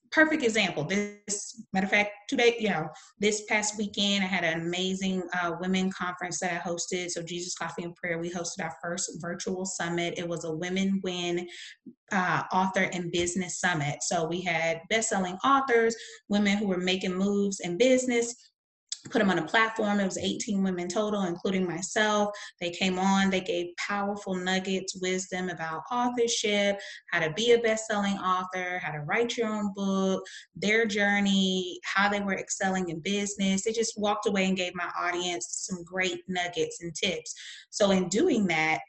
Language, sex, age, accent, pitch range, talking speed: English, female, 20-39, American, 175-210 Hz, 180 wpm